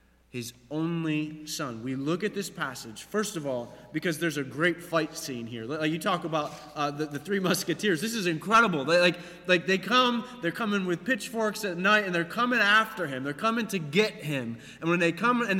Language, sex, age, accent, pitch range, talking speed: English, male, 30-49, American, 170-240 Hz, 215 wpm